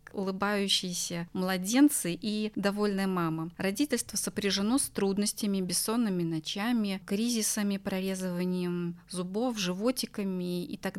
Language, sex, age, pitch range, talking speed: Russian, female, 20-39, 180-220 Hz, 95 wpm